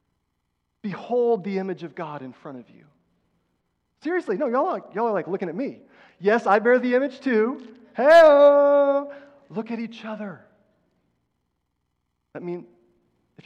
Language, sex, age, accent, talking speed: English, male, 30-49, American, 145 wpm